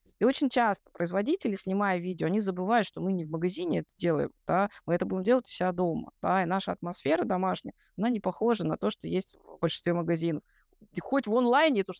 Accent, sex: native, female